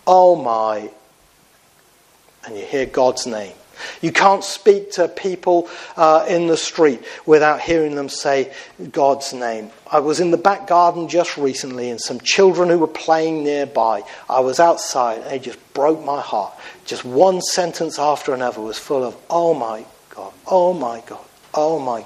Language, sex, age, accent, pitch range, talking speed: English, male, 50-69, British, 140-190 Hz, 160 wpm